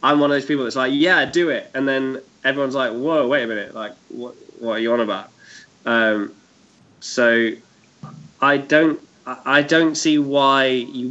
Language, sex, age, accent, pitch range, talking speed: English, male, 10-29, British, 115-130 Hz, 185 wpm